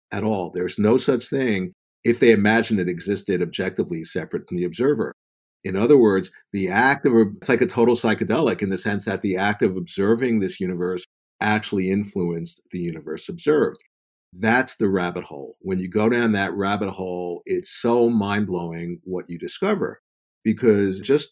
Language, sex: English, male